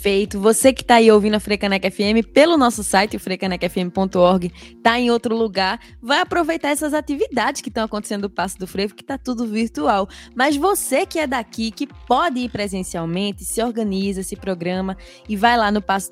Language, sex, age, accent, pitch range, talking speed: Portuguese, female, 10-29, Brazilian, 195-245 Hz, 190 wpm